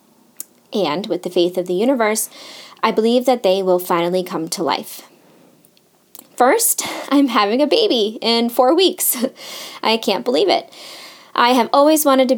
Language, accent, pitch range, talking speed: English, American, 190-260 Hz, 160 wpm